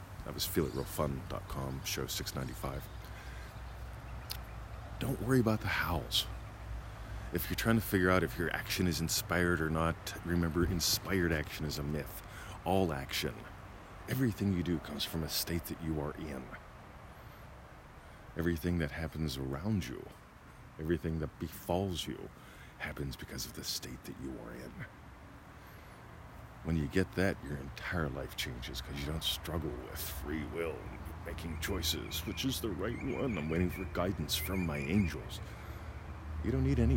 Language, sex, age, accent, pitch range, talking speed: English, male, 40-59, American, 80-100 Hz, 155 wpm